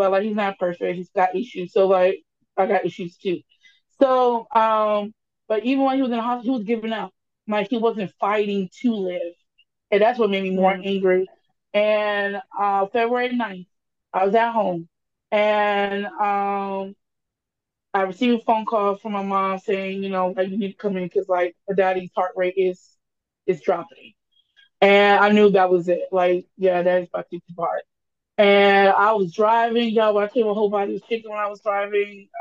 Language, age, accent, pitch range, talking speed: English, 20-39, American, 185-210 Hz, 195 wpm